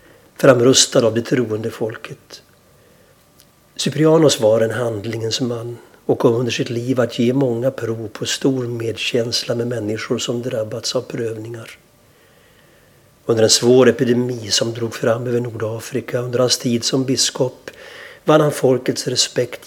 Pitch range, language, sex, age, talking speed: 115-130 Hz, Swedish, male, 60-79, 135 wpm